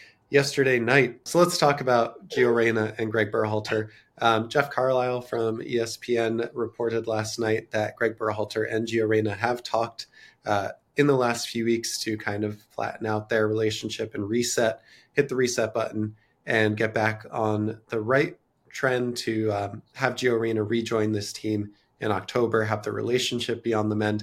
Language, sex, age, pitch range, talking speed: English, male, 20-39, 110-125 Hz, 175 wpm